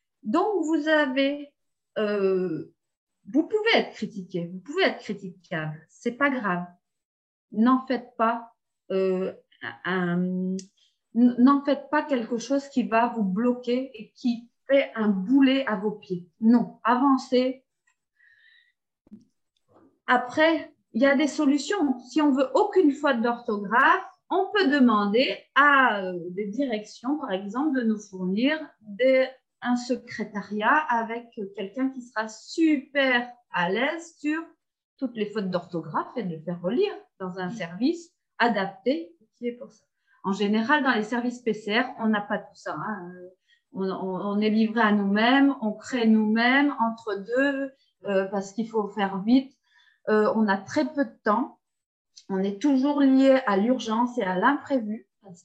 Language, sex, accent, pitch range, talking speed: French, female, French, 210-275 Hz, 145 wpm